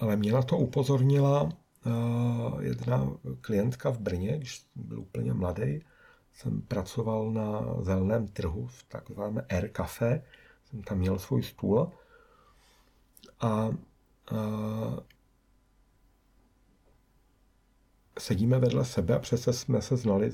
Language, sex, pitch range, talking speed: Czech, male, 115-180 Hz, 105 wpm